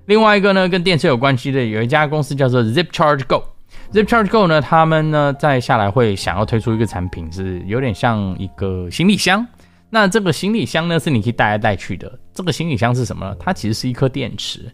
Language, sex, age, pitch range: Chinese, male, 20-39, 95-125 Hz